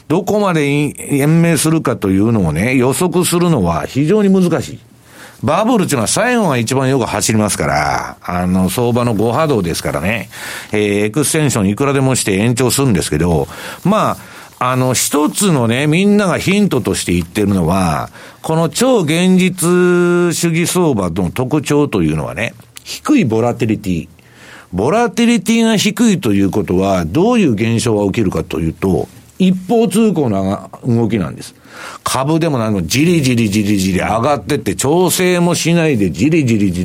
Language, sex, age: Japanese, male, 60-79